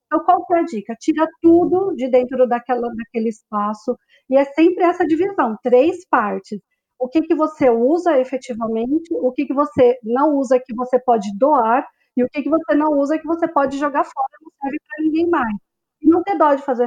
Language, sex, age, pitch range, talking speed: Portuguese, female, 40-59, 245-315 Hz, 210 wpm